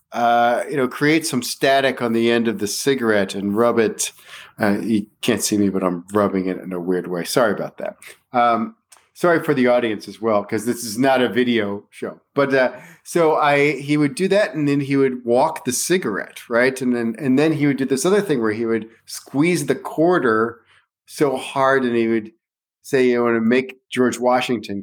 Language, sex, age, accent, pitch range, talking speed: English, male, 40-59, American, 110-135 Hz, 220 wpm